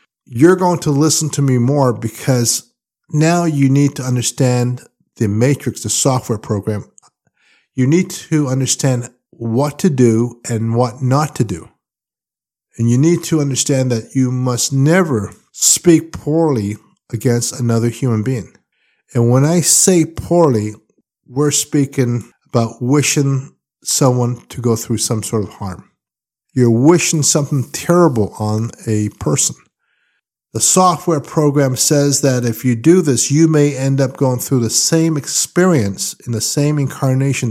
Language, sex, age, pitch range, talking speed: English, male, 50-69, 115-150 Hz, 145 wpm